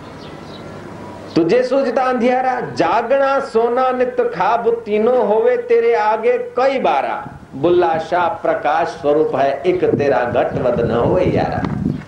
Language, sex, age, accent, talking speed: Hindi, male, 50-69, native, 110 wpm